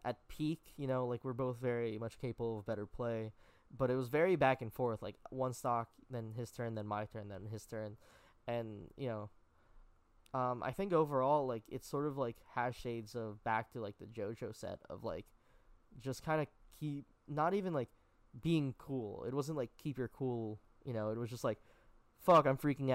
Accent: American